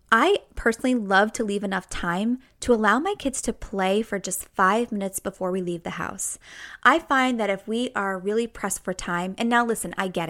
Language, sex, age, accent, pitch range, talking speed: English, female, 20-39, American, 200-265 Hz, 215 wpm